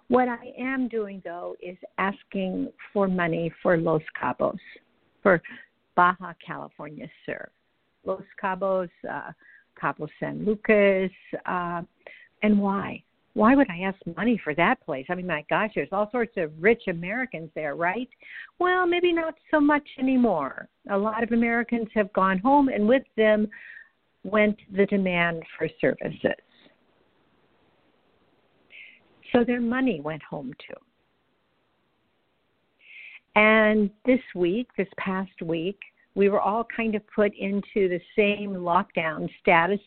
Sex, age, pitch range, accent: female, 60-79, 175-230 Hz, American